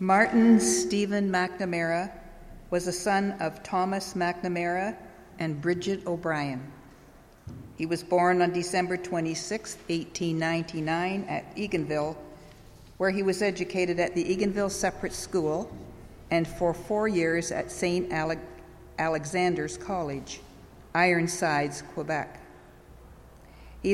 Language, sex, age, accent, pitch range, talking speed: English, female, 50-69, American, 165-195 Hz, 105 wpm